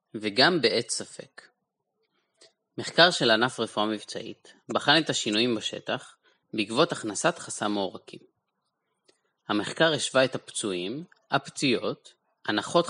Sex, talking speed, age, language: male, 100 wpm, 20-39, English